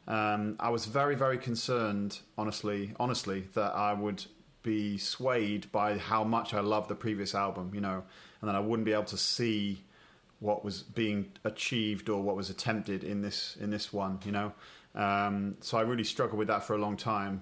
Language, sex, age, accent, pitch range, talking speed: English, male, 30-49, British, 105-120 Hz, 195 wpm